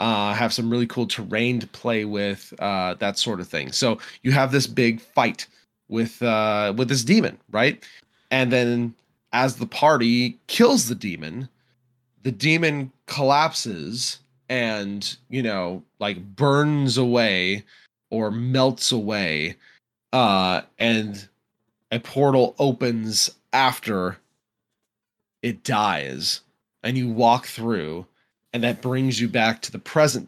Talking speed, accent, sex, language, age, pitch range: 130 wpm, American, male, English, 20-39, 105-130 Hz